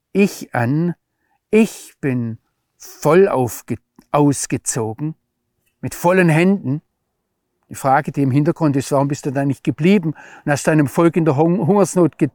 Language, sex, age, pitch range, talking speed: German, male, 50-69, 120-160 Hz, 135 wpm